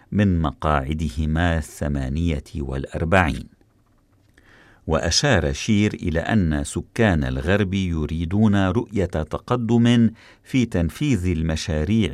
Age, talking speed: 50-69, 80 wpm